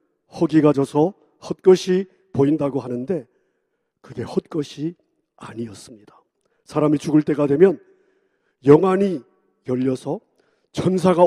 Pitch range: 150-215 Hz